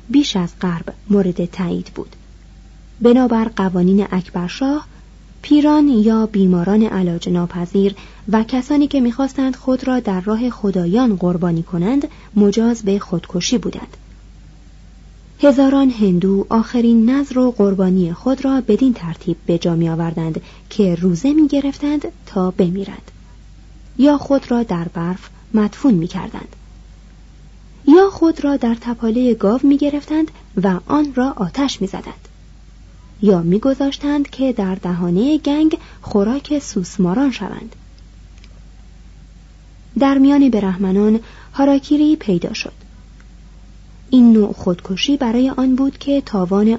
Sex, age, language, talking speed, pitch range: female, 30-49, Persian, 115 wpm, 185-270 Hz